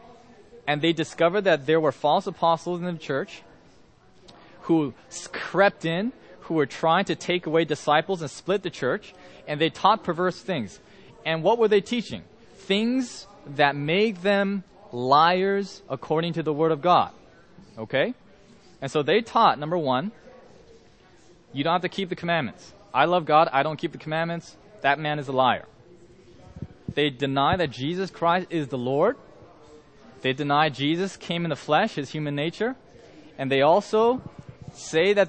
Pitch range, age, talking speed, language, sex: 150-195 Hz, 20-39, 165 wpm, English, male